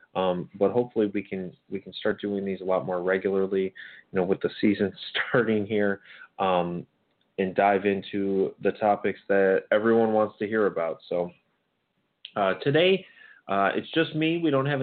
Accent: American